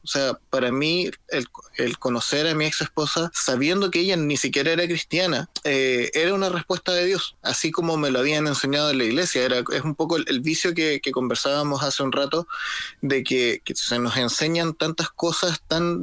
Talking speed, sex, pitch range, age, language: 200 wpm, male, 135-175 Hz, 20-39, Spanish